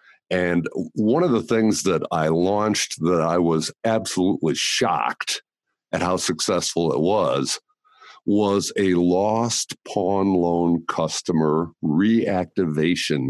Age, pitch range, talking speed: 60-79, 85-115 Hz, 115 wpm